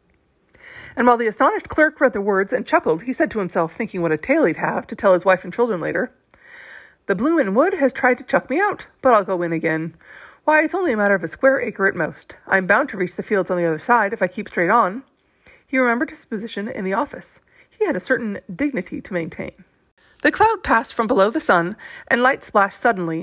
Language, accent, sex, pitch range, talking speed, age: English, American, female, 195-280 Hz, 235 wpm, 30-49